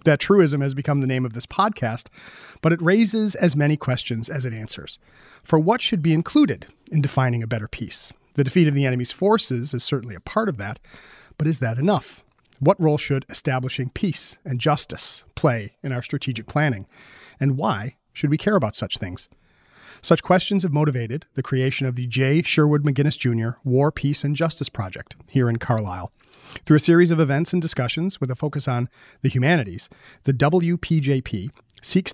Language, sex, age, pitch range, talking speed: English, male, 40-59, 125-160 Hz, 185 wpm